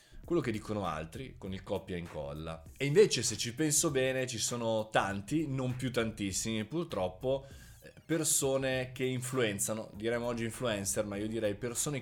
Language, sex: Italian, male